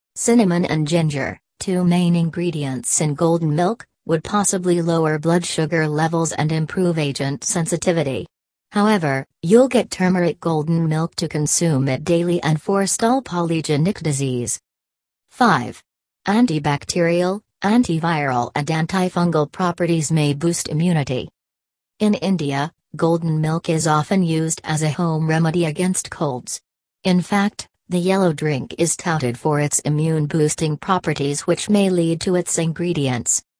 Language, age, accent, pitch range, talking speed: English, 40-59, American, 150-180 Hz, 130 wpm